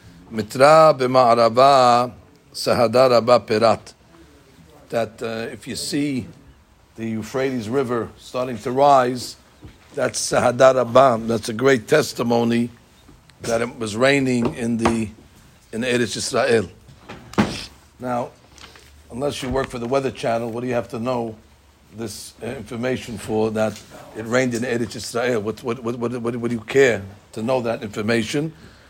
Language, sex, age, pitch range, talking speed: English, male, 60-79, 115-130 Hz, 130 wpm